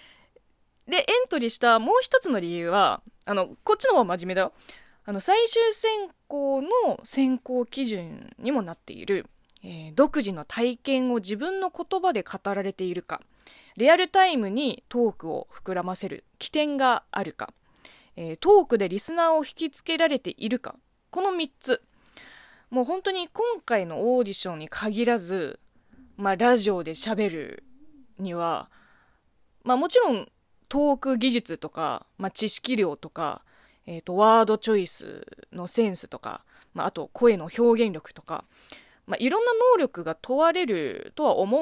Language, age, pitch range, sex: Japanese, 20-39, 200-330 Hz, female